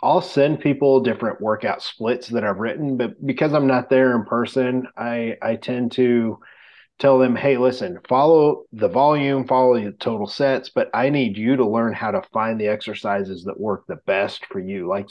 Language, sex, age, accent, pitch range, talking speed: English, male, 30-49, American, 115-140 Hz, 195 wpm